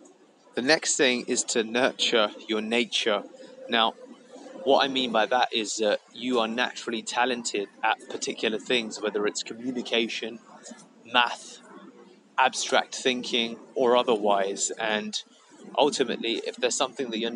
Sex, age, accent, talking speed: male, 20-39, British, 130 wpm